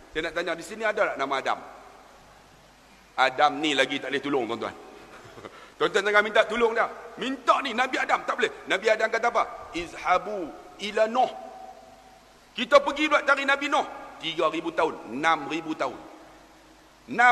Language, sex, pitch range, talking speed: Malay, male, 175-280 Hz, 155 wpm